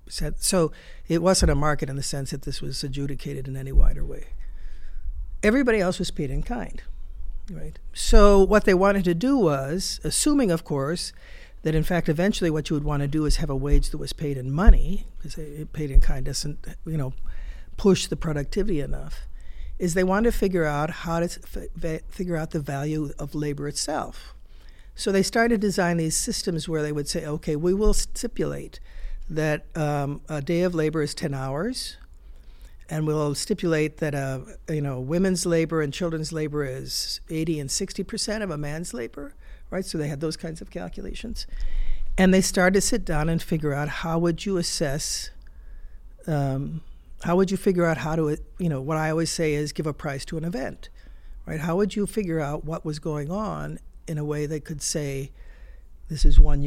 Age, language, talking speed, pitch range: 50-69, English, 195 wpm, 140-175 Hz